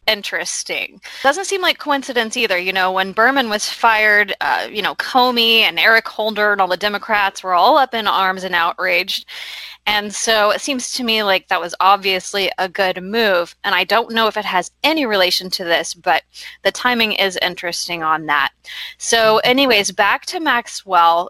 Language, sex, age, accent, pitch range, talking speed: English, female, 20-39, American, 190-240 Hz, 185 wpm